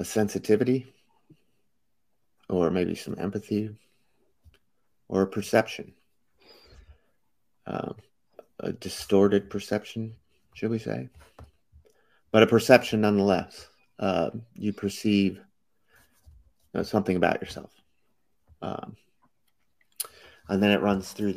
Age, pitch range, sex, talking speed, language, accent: 30-49, 90-105 Hz, male, 95 wpm, English, American